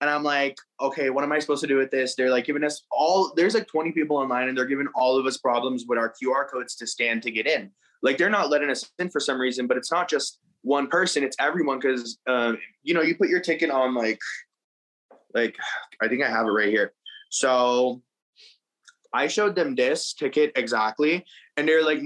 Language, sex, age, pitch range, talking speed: English, male, 20-39, 125-155 Hz, 225 wpm